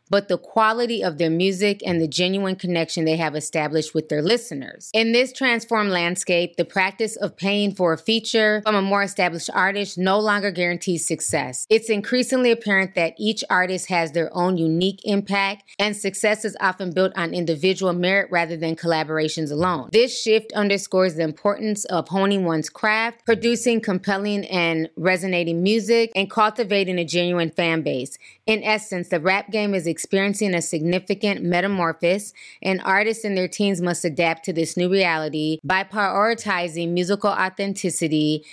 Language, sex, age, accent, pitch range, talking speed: English, female, 20-39, American, 170-205 Hz, 165 wpm